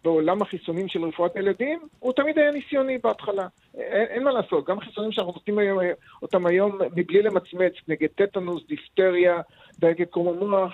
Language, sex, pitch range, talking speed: Hebrew, male, 165-230 Hz, 150 wpm